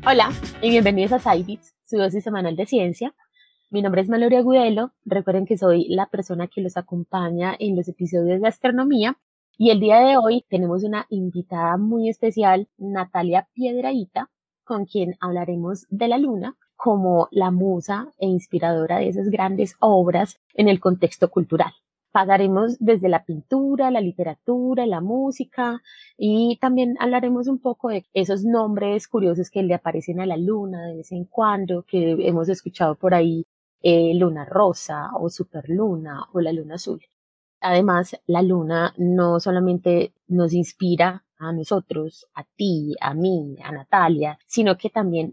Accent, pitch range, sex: Colombian, 175-215 Hz, female